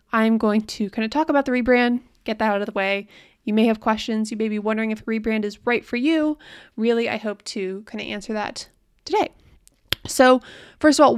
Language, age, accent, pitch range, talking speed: English, 20-39, American, 205-245 Hz, 230 wpm